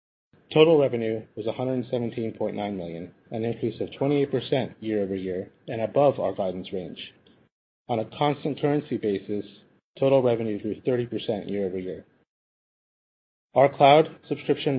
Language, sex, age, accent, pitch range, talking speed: English, male, 30-49, American, 105-135 Hz, 115 wpm